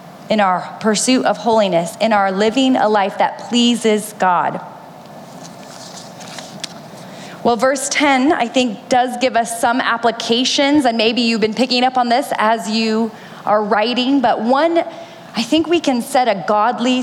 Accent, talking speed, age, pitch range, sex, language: American, 155 wpm, 30-49, 200-250 Hz, female, English